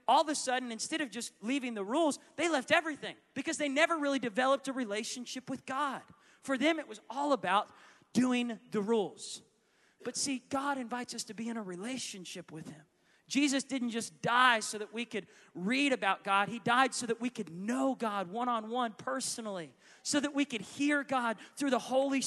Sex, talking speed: male, 195 wpm